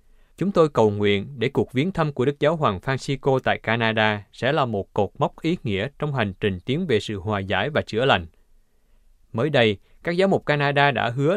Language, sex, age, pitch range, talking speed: Vietnamese, male, 20-39, 105-140 Hz, 215 wpm